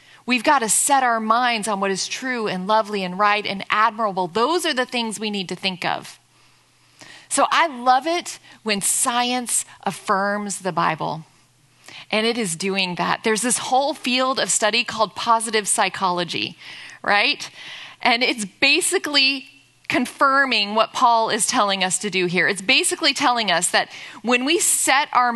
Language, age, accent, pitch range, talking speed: English, 30-49, American, 205-265 Hz, 165 wpm